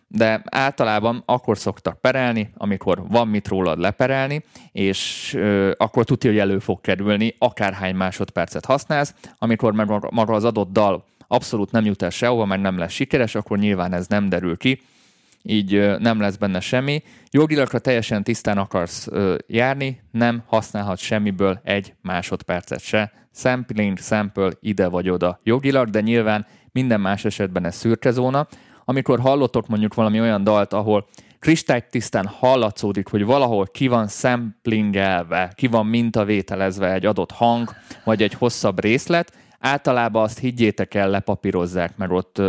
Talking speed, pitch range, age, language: 145 wpm, 100-120 Hz, 30-49, Hungarian